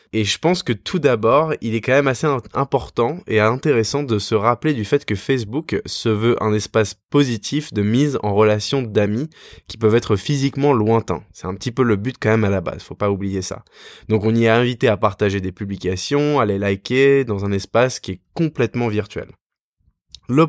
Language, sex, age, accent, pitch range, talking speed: French, male, 20-39, French, 100-125 Hz, 210 wpm